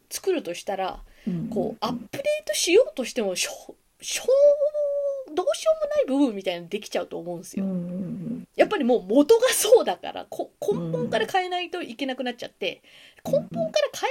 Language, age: Japanese, 20-39